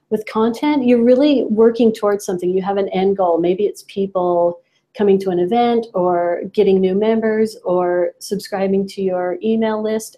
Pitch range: 180-210 Hz